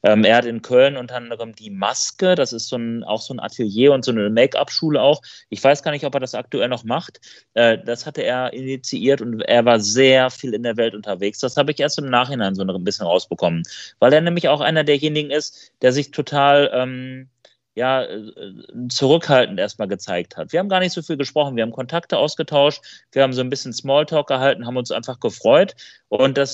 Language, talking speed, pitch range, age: German, 210 wpm, 115-140 Hz, 30-49